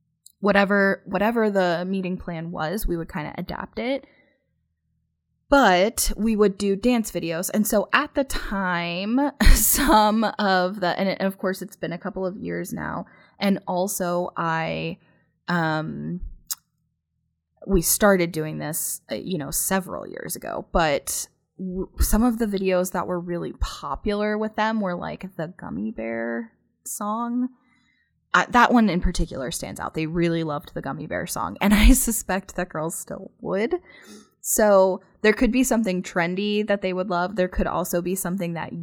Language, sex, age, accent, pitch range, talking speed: English, female, 20-39, American, 170-210 Hz, 165 wpm